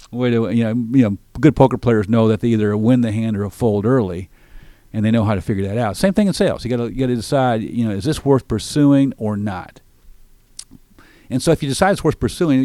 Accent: American